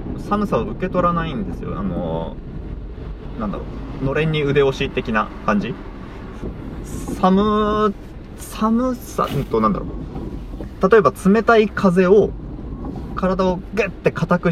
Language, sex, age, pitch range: Japanese, male, 20-39, 120-195 Hz